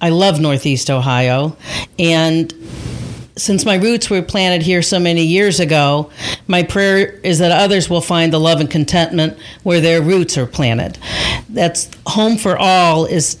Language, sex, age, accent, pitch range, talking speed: English, female, 40-59, American, 155-180 Hz, 160 wpm